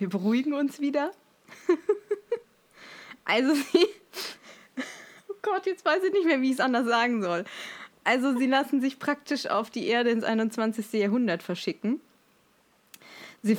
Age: 20-39